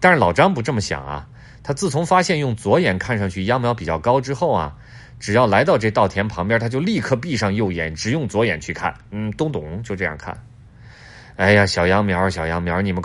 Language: Chinese